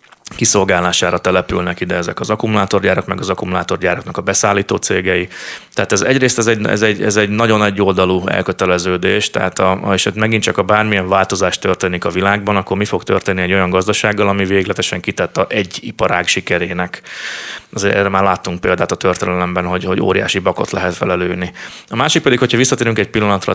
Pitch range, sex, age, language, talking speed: 95-105 Hz, male, 30-49, Hungarian, 175 wpm